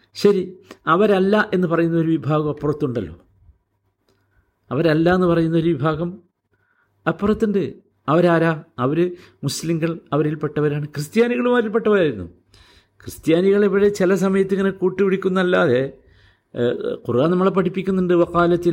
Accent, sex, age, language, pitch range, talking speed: native, male, 50-69, Malayalam, 145-195 Hz, 85 wpm